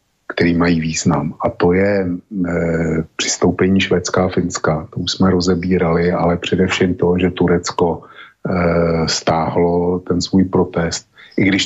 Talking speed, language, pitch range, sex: 140 wpm, Slovak, 85-95 Hz, male